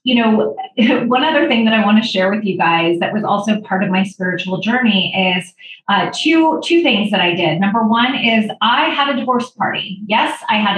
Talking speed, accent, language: 225 wpm, American, English